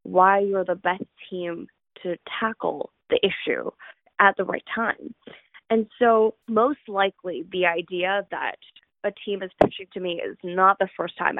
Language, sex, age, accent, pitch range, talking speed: English, female, 10-29, American, 175-210 Hz, 165 wpm